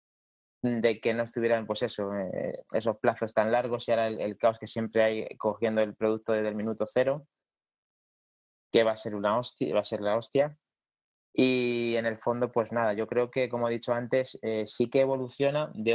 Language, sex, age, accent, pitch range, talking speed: Spanish, male, 20-39, Spanish, 110-125 Hz, 205 wpm